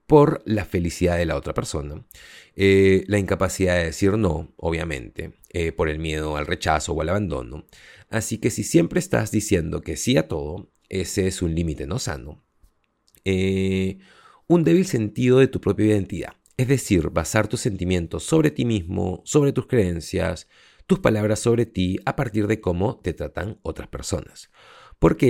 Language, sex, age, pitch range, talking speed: Spanish, male, 30-49, 90-115 Hz, 170 wpm